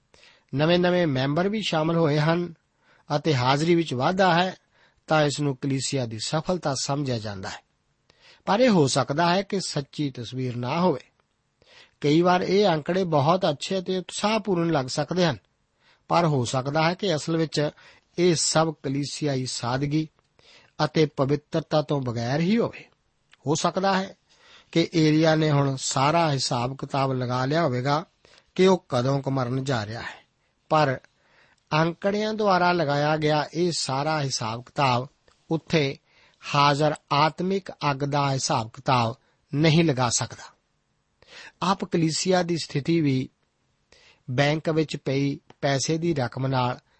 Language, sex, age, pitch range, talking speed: Punjabi, male, 50-69, 135-170 Hz, 125 wpm